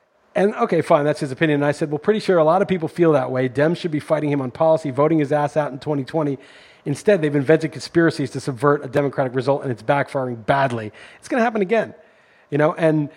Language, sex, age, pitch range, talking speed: English, male, 30-49, 140-160 Hz, 235 wpm